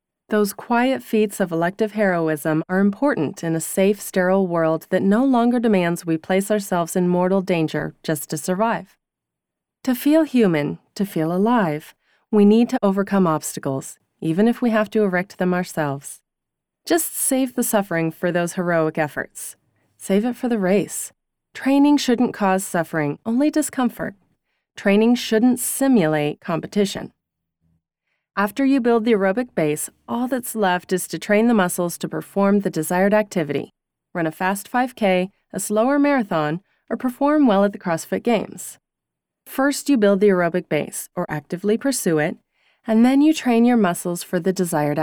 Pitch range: 175-235 Hz